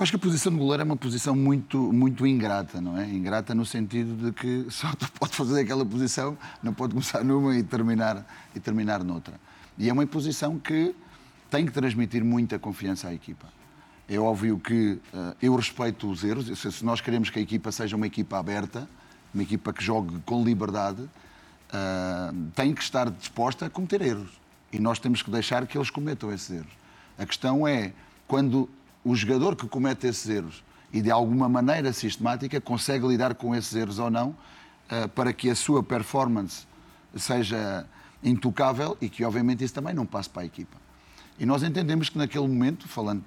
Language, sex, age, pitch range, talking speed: Portuguese, male, 30-49, 110-135 Hz, 185 wpm